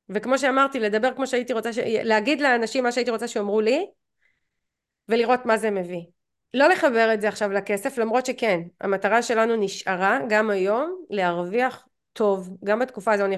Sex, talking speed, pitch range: female, 165 wpm, 195-240 Hz